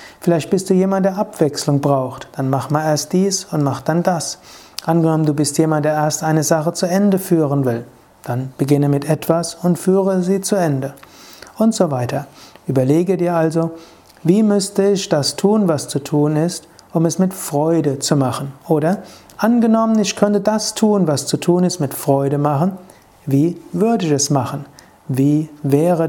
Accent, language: German, German